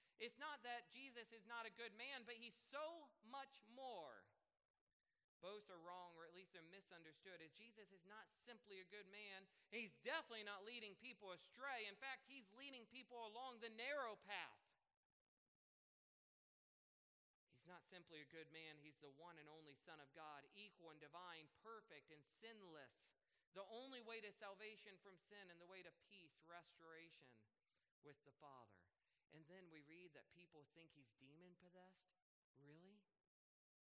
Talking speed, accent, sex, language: 160 wpm, American, male, English